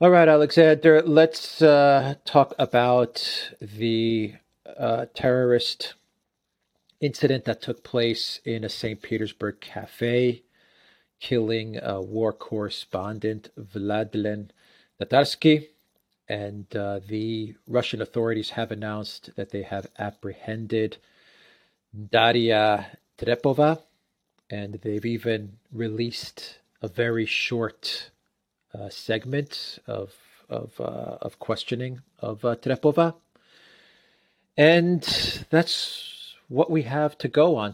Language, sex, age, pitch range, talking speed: English, male, 40-59, 105-135 Hz, 100 wpm